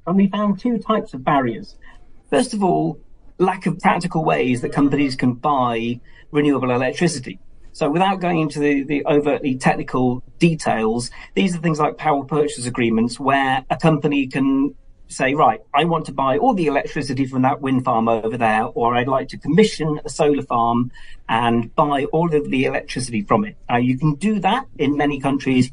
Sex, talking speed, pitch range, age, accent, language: male, 185 wpm, 125-160 Hz, 40-59, British, English